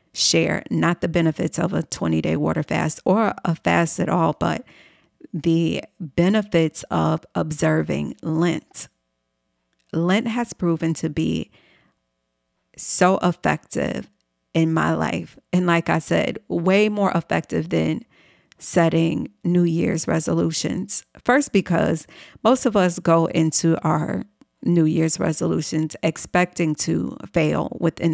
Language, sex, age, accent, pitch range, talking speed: English, female, 40-59, American, 155-170 Hz, 125 wpm